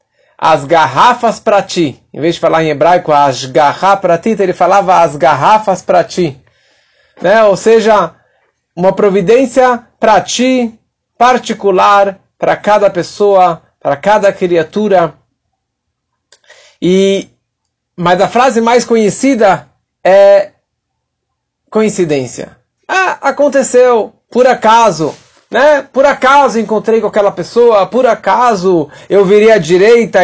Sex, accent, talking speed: male, Brazilian, 115 wpm